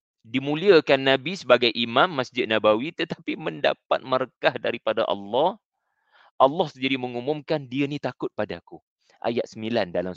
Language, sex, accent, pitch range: English, male, Indonesian, 95-125 Hz